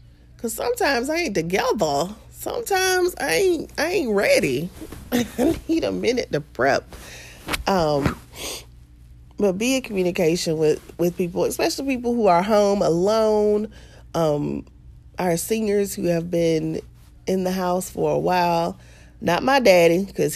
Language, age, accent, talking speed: English, 30-49, American, 140 wpm